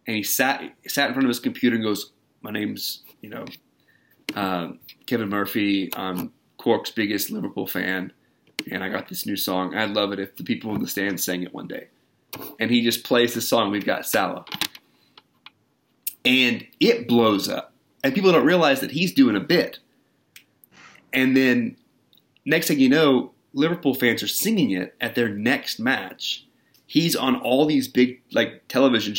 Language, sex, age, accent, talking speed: English, male, 30-49, American, 175 wpm